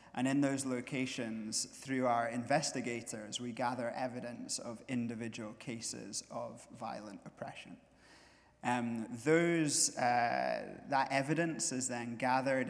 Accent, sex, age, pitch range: British, male, 30-49, 115-130 Hz